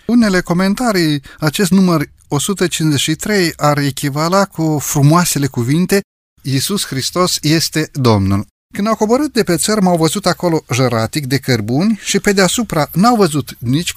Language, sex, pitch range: Romanian, male, 135-175 Hz